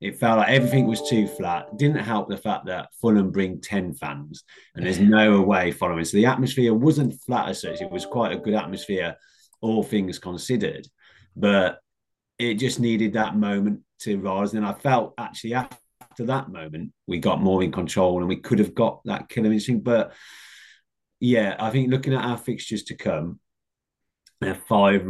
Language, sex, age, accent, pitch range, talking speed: English, male, 30-49, British, 80-110 Hz, 180 wpm